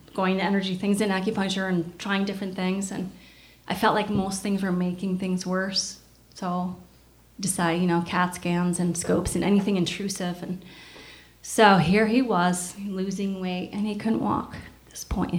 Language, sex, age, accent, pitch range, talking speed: English, female, 20-39, American, 175-200 Hz, 175 wpm